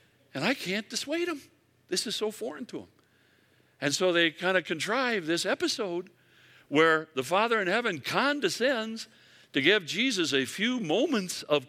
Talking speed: 165 wpm